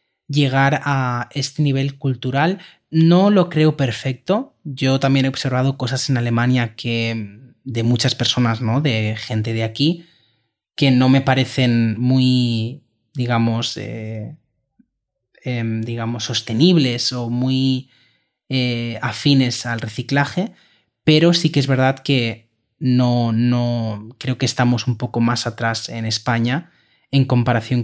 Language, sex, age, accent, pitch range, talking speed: Spanish, male, 30-49, Spanish, 120-140 Hz, 130 wpm